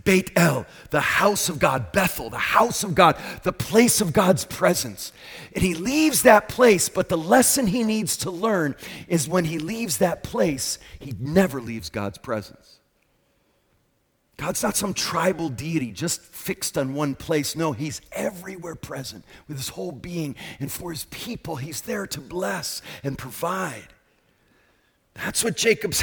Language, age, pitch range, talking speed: English, 40-59, 155-215 Hz, 160 wpm